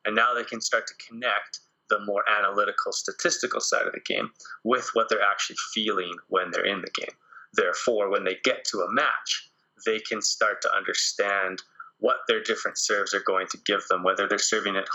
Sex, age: male, 20-39